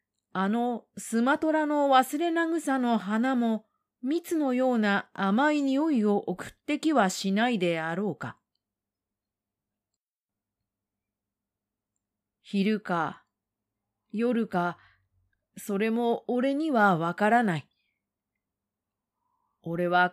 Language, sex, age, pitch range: Japanese, female, 30-49, 175-260 Hz